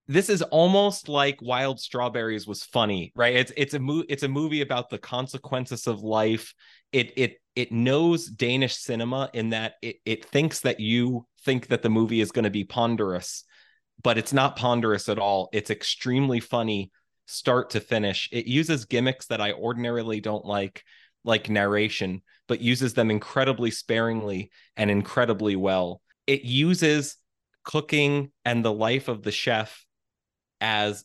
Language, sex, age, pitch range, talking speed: English, male, 30-49, 105-130 Hz, 160 wpm